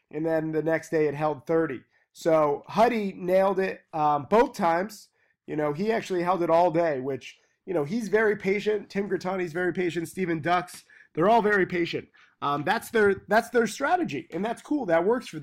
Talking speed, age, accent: 200 wpm, 20-39, American